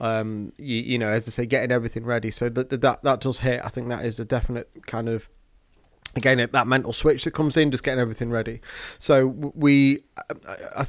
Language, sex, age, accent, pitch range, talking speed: English, male, 30-49, British, 115-130 Hz, 210 wpm